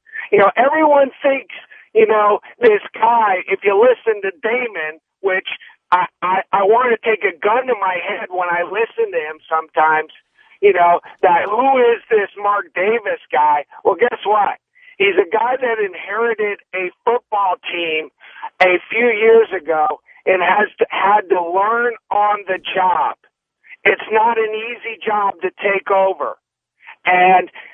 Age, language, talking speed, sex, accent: 50-69, English, 160 wpm, male, American